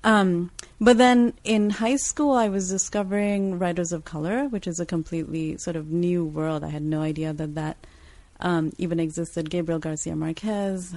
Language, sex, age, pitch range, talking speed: English, female, 30-49, 160-195 Hz, 175 wpm